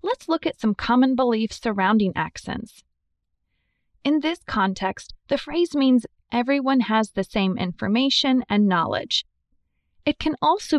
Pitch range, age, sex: 175-250 Hz, 20-39, female